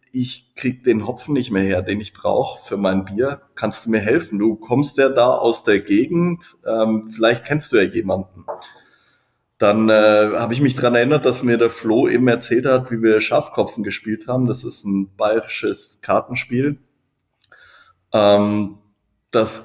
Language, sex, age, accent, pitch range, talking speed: German, male, 20-39, German, 110-135 Hz, 170 wpm